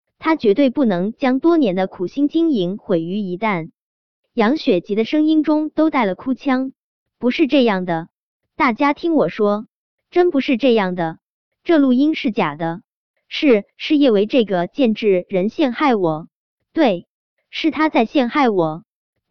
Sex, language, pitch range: male, Chinese, 195-285 Hz